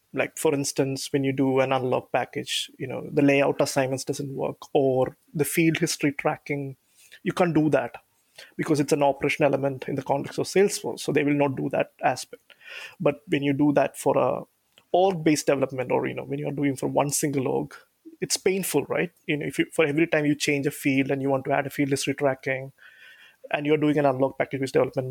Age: 20-39